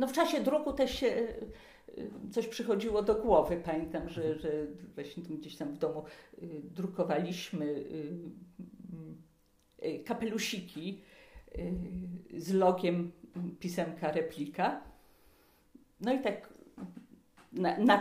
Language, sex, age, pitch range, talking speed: Polish, female, 50-69, 165-230 Hz, 100 wpm